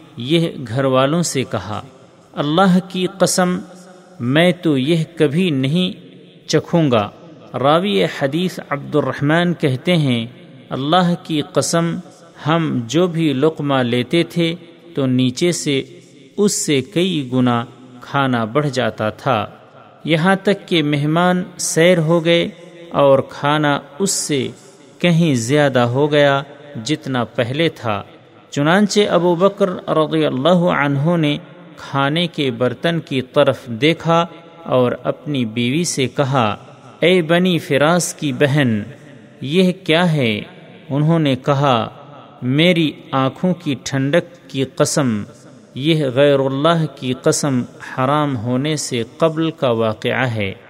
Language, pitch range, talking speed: Urdu, 130-170 Hz, 125 wpm